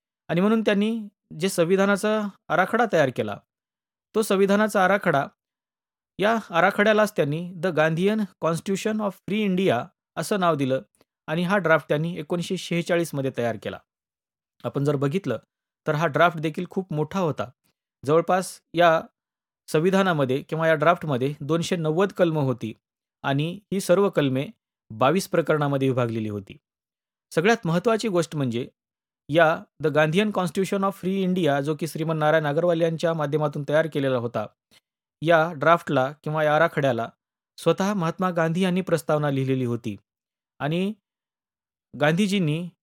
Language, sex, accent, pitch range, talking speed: Marathi, male, native, 150-195 Hz, 130 wpm